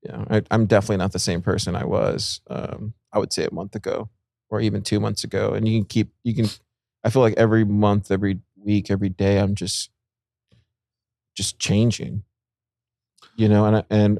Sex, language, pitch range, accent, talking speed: male, English, 100-115 Hz, American, 195 wpm